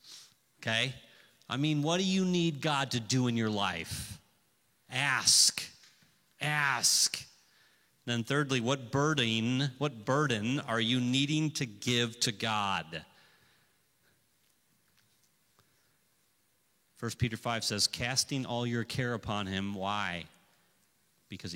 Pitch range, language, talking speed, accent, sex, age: 105-125 Hz, English, 115 wpm, American, male, 40-59